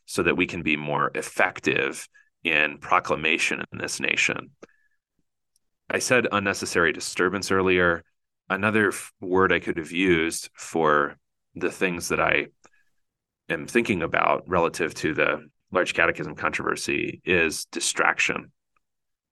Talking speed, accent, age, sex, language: 125 wpm, American, 30-49, male, English